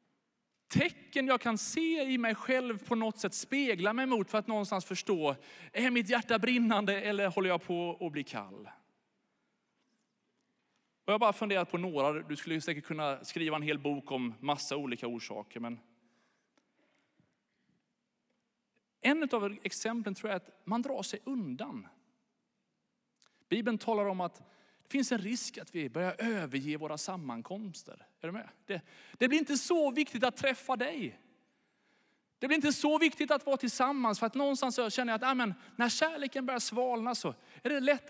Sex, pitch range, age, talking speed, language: male, 180-245 Hz, 30-49, 165 wpm, Swedish